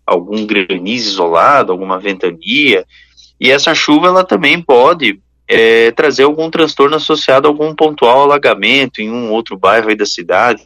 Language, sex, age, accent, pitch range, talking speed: Portuguese, male, 20-39, Brazilian, 120-155 Hz, 145 wpm